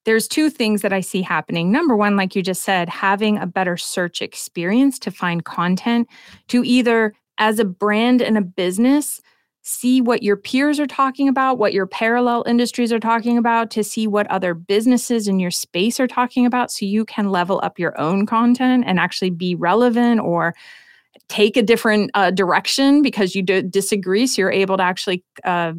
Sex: female